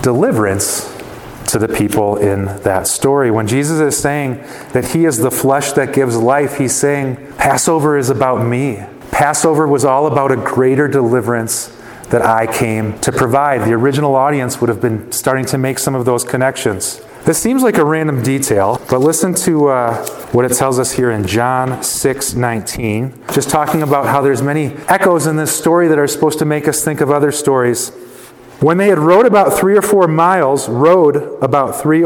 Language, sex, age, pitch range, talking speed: English, male, 30-49, 125-150 Hz, 190 wpm